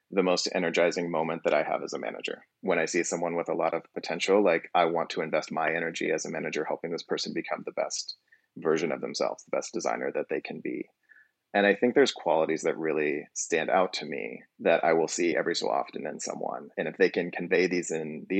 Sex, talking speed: male, 240 wpm